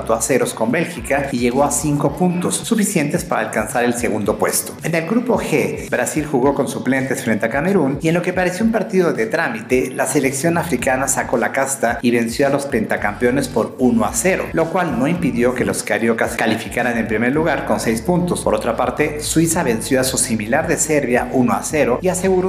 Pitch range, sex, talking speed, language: 115-150 Hz, male, 210 wpm, Spanish